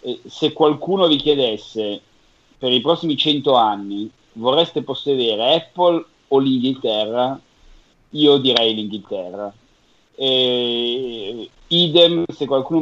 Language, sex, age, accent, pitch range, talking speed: Italian, male, 40-59, native, 115-150 Hz, 100 wpm